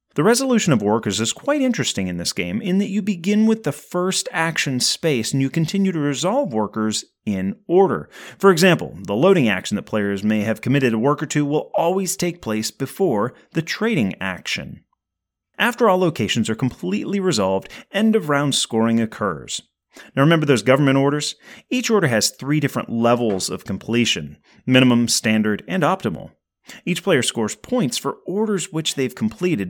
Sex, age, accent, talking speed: male, 30-49, American, 170 wpm